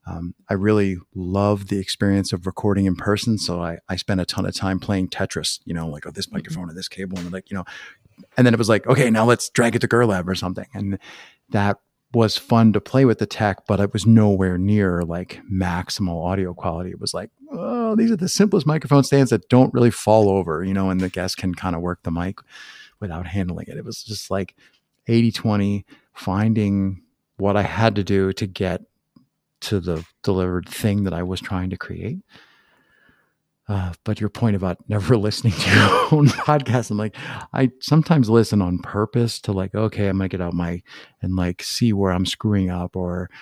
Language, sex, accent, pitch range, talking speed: English, male, American, 95-115 Hz, 210 wpm